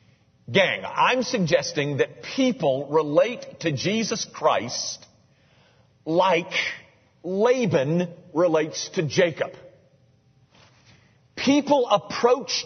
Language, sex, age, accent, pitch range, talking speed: English, male, 50-69, American, 145-220 Hz, 75 wpm